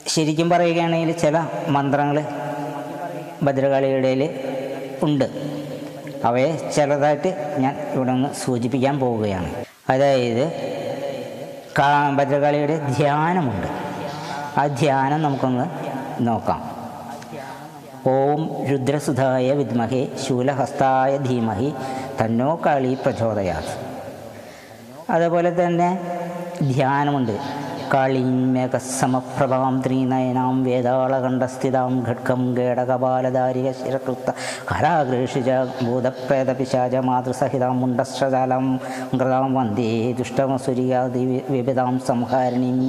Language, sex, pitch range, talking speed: Malayalam, female, 125-145 Hz, 65 wpm